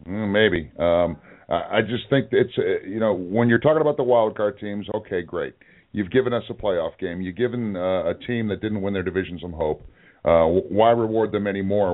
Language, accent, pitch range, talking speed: English, American, 100-125 Hz, 200 wpm